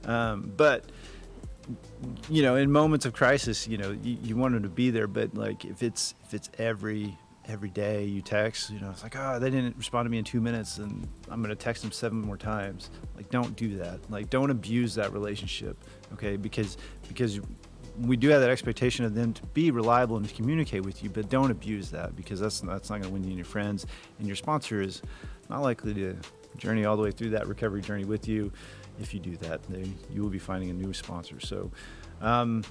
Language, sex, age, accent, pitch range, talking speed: English, male, 30-49, American, 100-120 Hz, 225 wpm